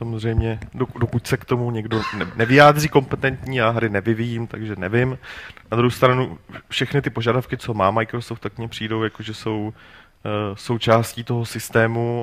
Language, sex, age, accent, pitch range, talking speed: Czech, male, 30-49, native, 105-120 Hz, 155 wpm